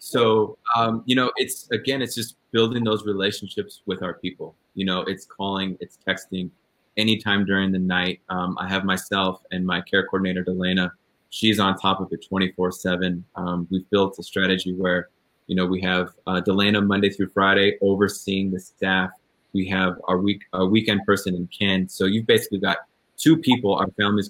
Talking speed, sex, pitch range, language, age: 185 wpm, male, 90-105 Hz, English, 20-39